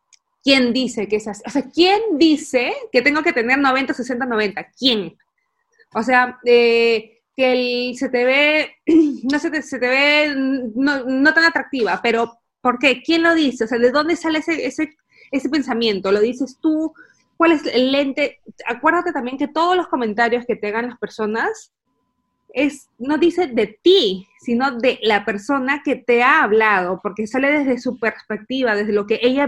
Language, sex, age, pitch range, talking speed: Spanish, female, 20-39, 230-290 Hz, 185 wpm